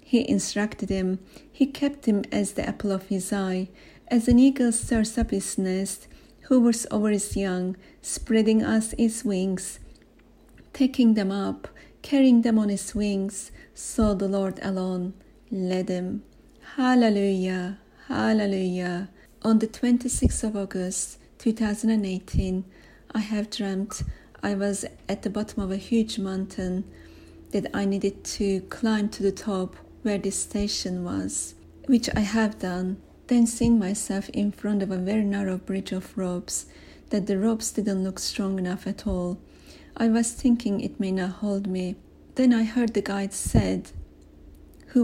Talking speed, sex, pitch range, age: 150 wpm, female, 190-220 Hz, 40-59